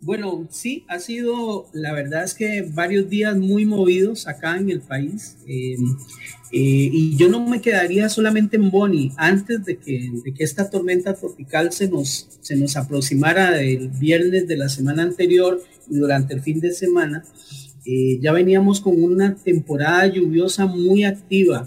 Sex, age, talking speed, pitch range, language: male, 40-59, 160 wpm, 145-195 Hz, English